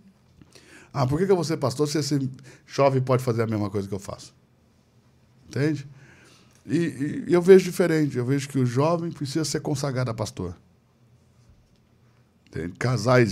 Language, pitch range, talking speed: Portuguese, 100-140 Hz, 160 wpm